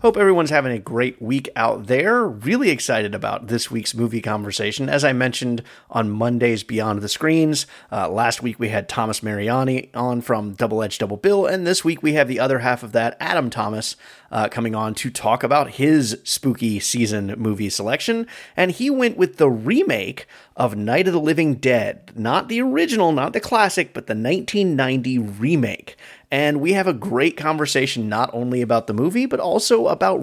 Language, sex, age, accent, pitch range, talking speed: English, male, 30-49, American, 110-145 Hz, 190 wpm